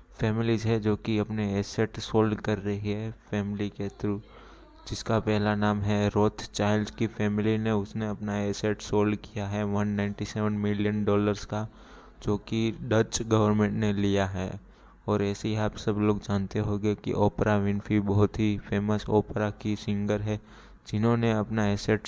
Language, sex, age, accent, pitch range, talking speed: Hindi, male, 20-39, native, 105-110 Hz, 170 wpm